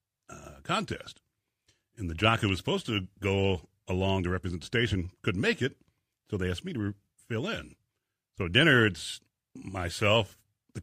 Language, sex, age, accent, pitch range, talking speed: English, male, 60-79, American, 90-110 Hz, 170 wpm